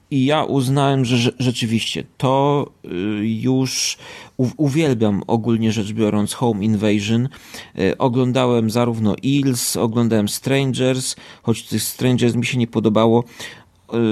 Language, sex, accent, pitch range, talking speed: Polish, male, native, 110-130 Hz, 105 wpm